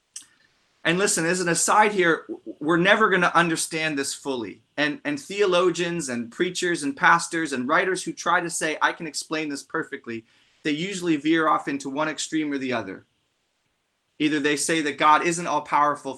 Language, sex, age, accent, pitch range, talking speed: English, male, 30-49, American, 140-170 Hz, 180 wpm